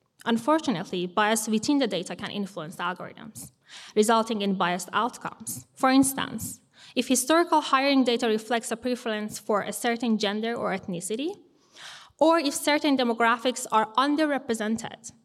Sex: female